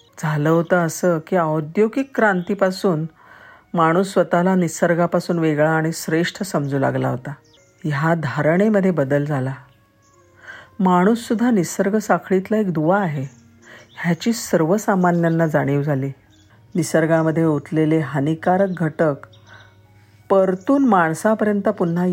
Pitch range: 140-185 Hz